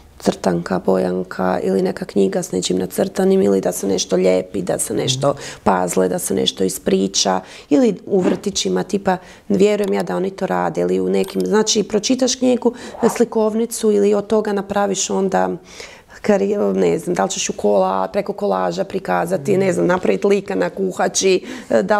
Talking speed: 160 wpm